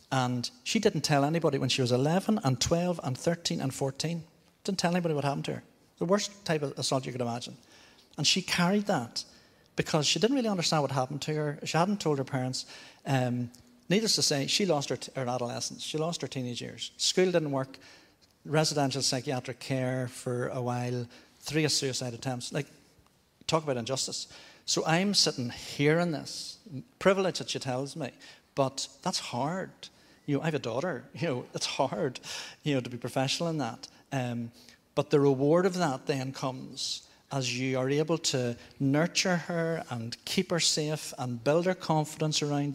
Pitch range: 130-160 Hz